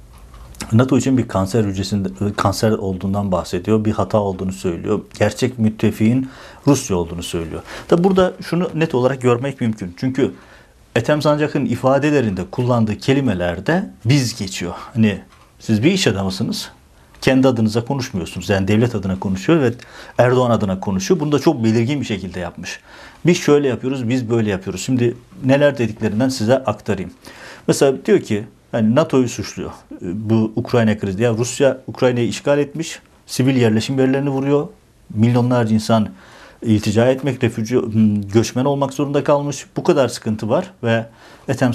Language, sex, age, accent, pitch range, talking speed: Turkish, male, 60-79, native, 105-130 Hz, 145 wpm